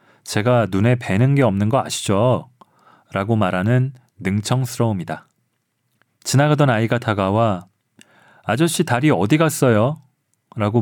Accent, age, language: native, 30-49, Korean